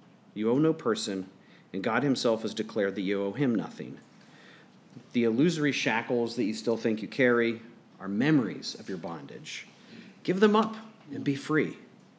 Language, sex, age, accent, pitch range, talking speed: English, male, 40-59, American, 125-170 Hz, 165 wpm